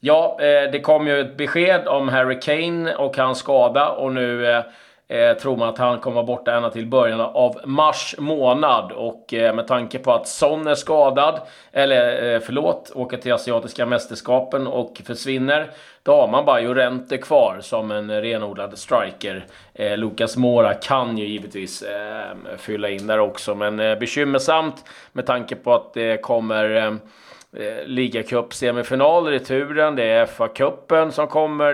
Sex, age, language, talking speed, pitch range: male, 30-49, Swedish, 165 wpm, 115-145 Hz